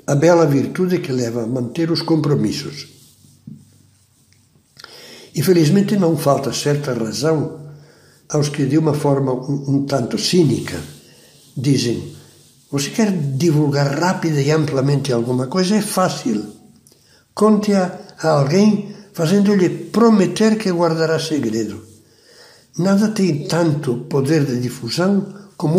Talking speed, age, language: 115 wpm, 60-79, Portuguese